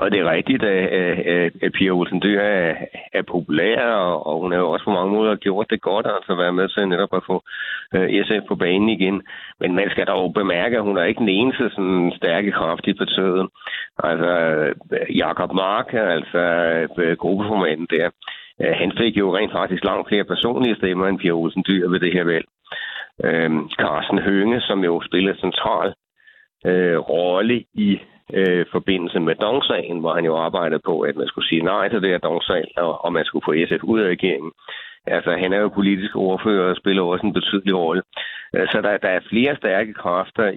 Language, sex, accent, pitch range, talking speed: Danish, male, native, 90-100 Hz, 185 wpm